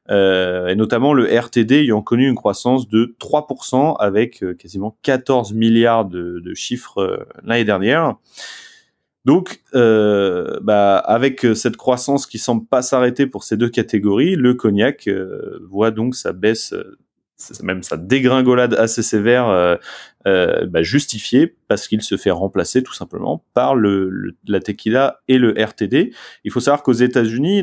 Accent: French